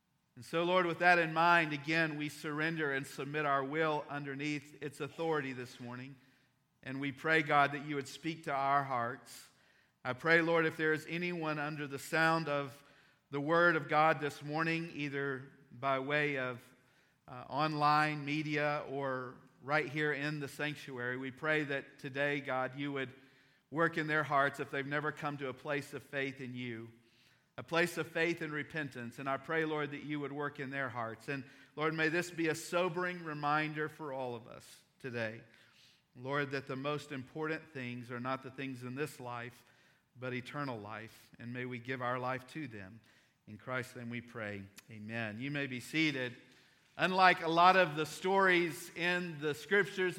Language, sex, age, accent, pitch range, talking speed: English, male, 50-69, American, 130-160 Hz, 185 wpm